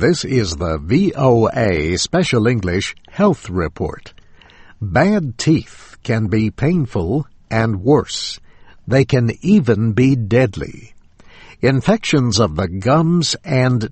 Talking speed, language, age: 110 wpm, English, 60-79